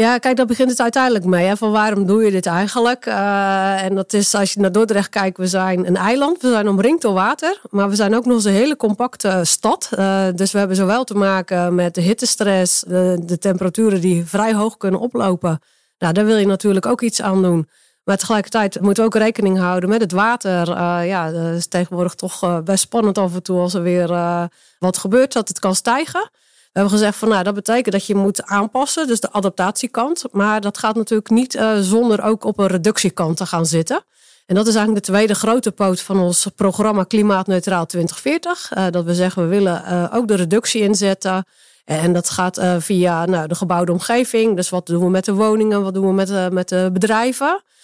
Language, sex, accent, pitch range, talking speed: Dutch, female, Dutch, 185-220 Hz, 215 wpm